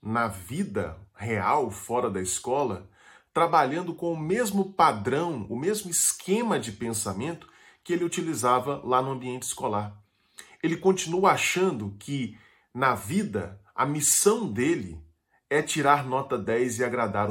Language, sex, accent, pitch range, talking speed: Portuguese, male, Brazilian, 105-170 Hz, 130 wpm